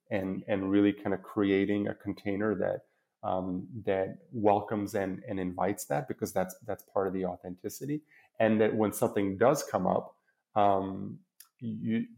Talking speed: 160 wpm